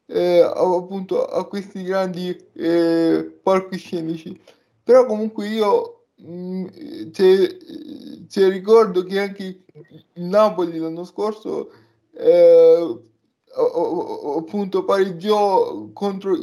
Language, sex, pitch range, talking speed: Italian, male, 180-215 Hz, 85 wpm